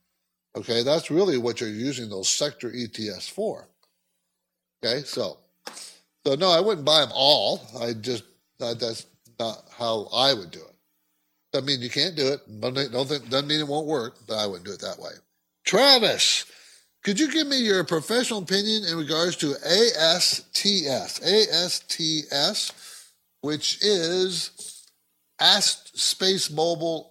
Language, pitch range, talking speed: English, 125-165 Hz, 140 wpm